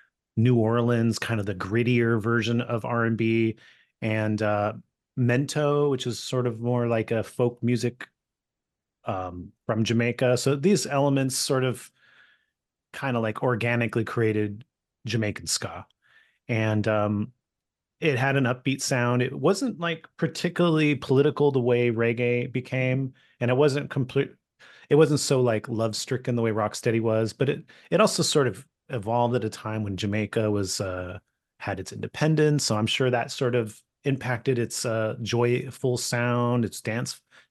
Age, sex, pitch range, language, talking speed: 30-49, male, 110-135 Hz, English, 155 wpm